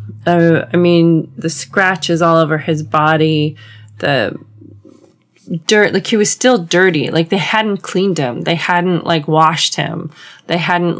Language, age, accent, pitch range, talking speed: English, 20-39, American, 160-200 Hz, 155 wpm